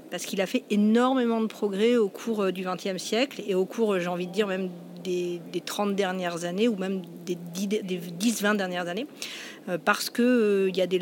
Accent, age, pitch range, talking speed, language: French, 50-69, 190-240 Hz, 210 wpm, French